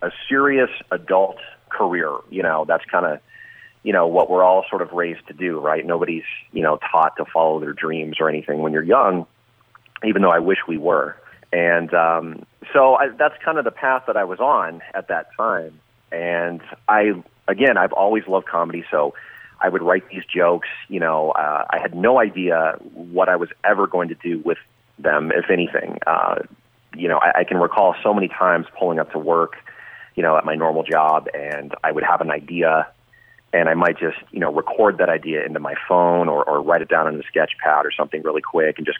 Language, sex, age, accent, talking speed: English, male, 30-49, American, 215 wpm